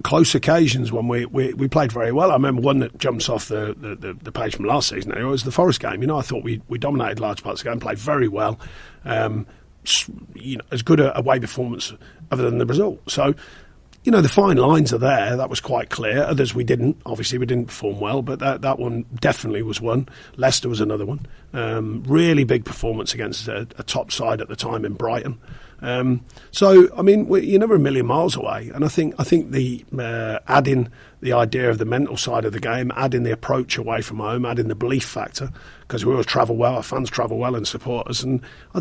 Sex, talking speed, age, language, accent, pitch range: male, 235 wpm, 40-59, English, British, 115-140 Hz